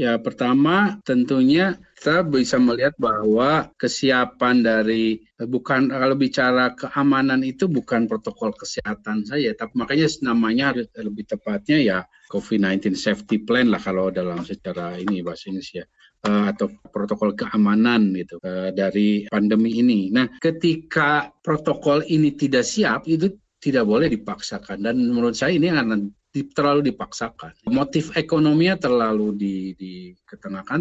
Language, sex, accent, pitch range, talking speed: Indonesian, male, native, 105-150 Hz, 120 wpm